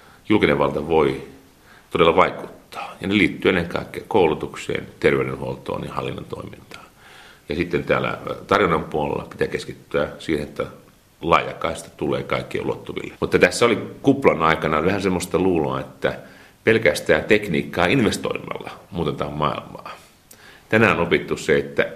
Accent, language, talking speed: native, Finnish, 130 wpm